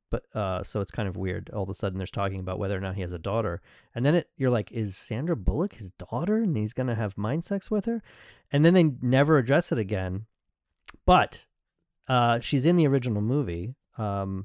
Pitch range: 100-130 Hz